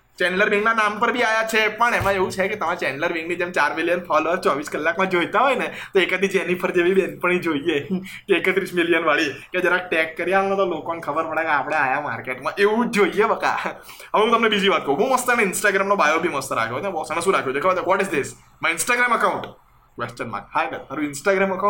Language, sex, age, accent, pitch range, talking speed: Gujarati, male, 20-39, native, 175-230 Hz, 90 wpm